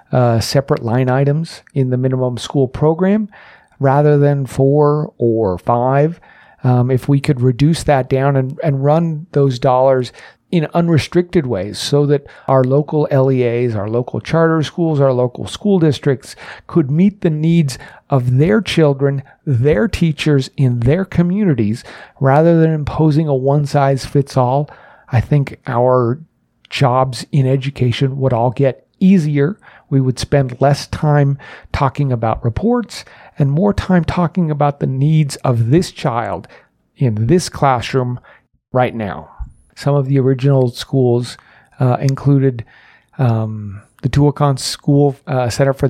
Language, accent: English, American